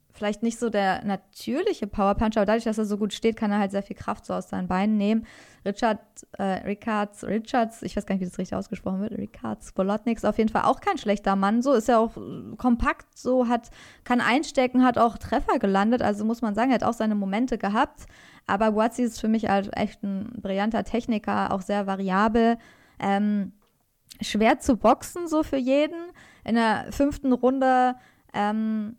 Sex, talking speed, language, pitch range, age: female, 195 wpm, German, 205-245 Hz, 20-39